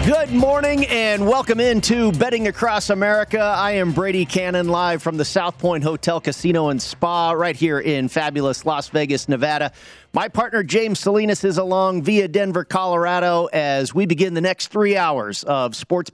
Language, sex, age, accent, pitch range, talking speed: English, male, 40-59, American, 150-195 Hz, 170 wpm